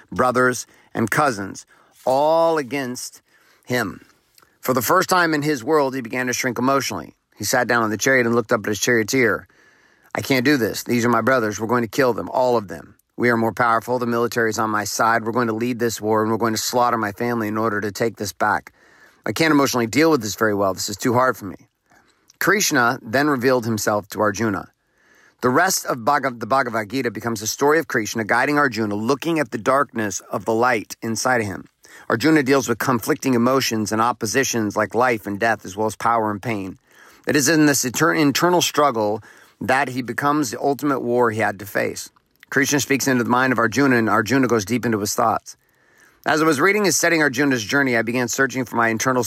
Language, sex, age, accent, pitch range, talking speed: English, male, 40-59, American, 110-135 Hz, 220 wpm